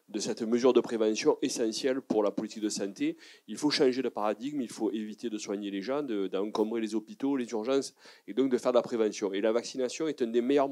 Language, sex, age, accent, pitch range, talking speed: French, male, 30-49, French, 115-150 Hz, 240 wpm